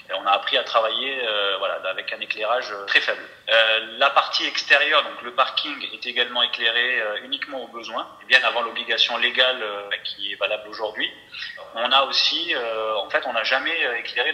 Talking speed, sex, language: 195 wpm, male, English